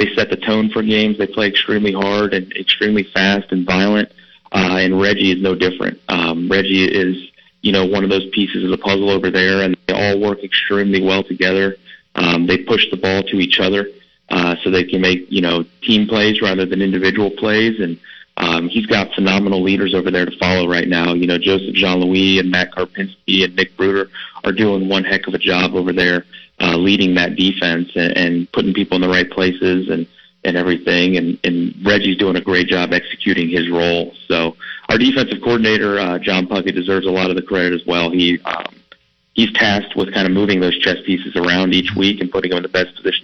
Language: English